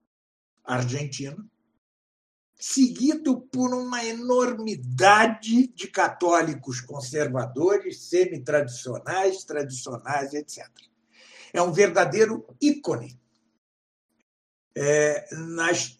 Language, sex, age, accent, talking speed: Portuguese, male, 60-79, Brazilian, 65 wpm